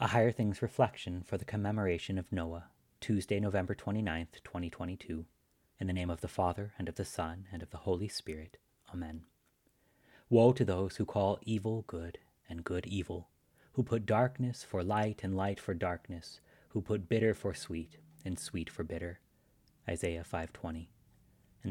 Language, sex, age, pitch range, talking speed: English, male, 30-49, 85-110 Hz, 165 wpm